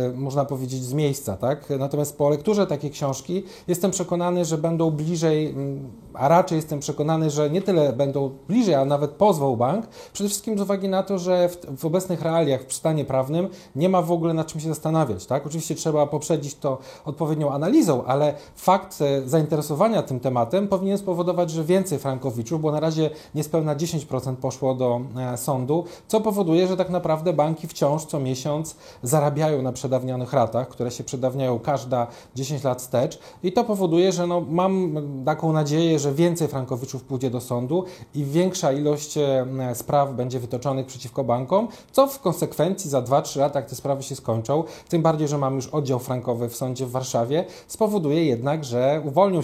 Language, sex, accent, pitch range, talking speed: Polish, male, native, 130-165 Hz, 175 wpm